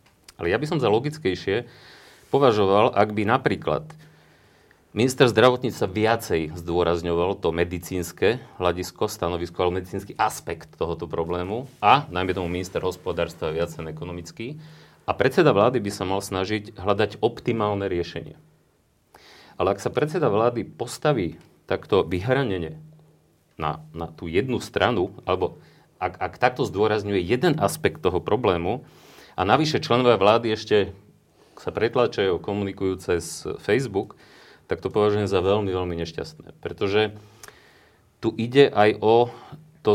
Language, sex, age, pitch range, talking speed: Slovak, male, 40-59, 90-115 Hz, 130 wpm